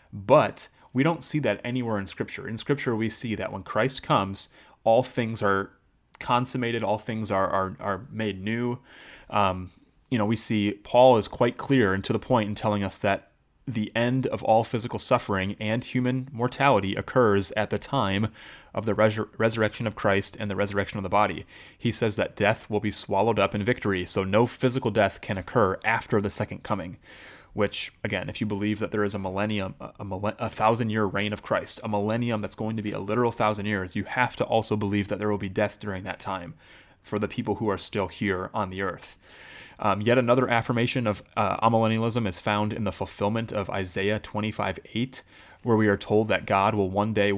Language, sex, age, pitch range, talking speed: English, male, 30-49, 100-115 Hz, 210 wpm